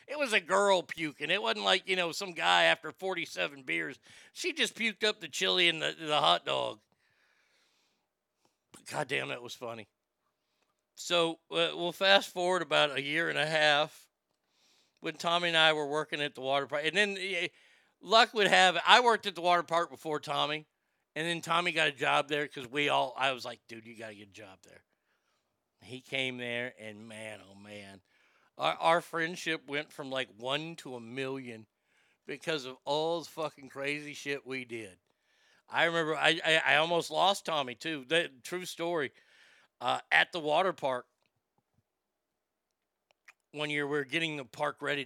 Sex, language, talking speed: male, English, 180 wpm